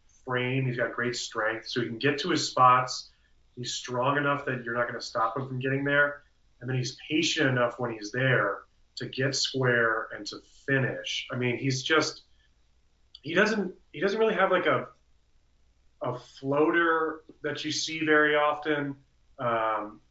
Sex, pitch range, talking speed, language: male, 110-145 Hz, 170 wpm, English